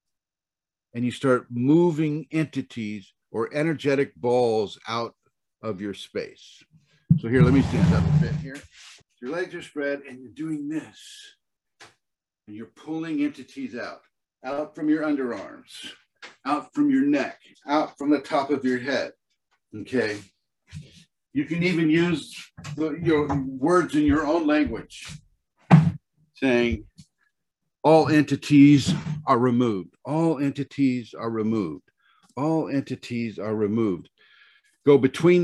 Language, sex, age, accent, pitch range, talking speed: English, male, 50-69, American, 120-160 Hz, 125 wpm